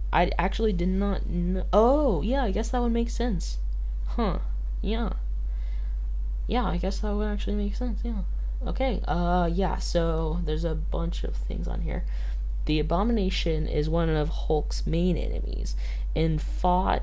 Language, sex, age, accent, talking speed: English, female, 10-29, American, 160 wpm